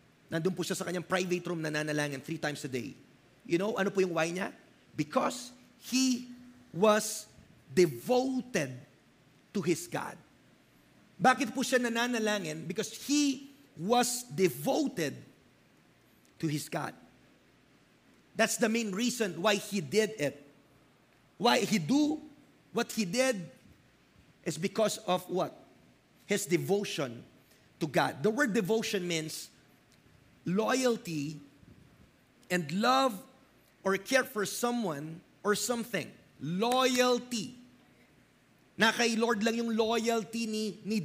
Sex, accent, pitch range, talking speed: male, Filipino, 185-235 Hz, 120 wpm